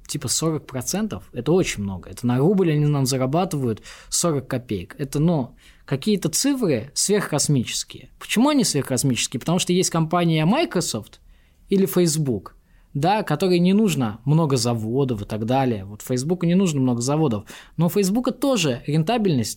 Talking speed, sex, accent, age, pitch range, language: 145 wpm, male, native, 20-39, 125-185 Hz, Russian